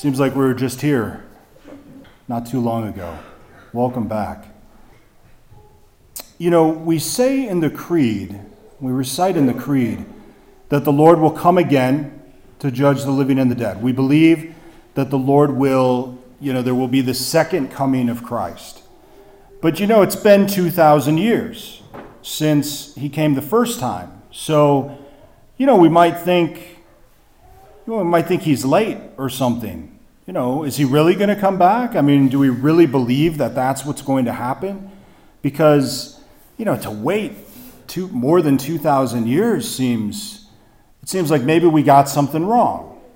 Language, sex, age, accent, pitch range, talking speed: English, male, 40-59, American, 130-170 Hz, 165 wpm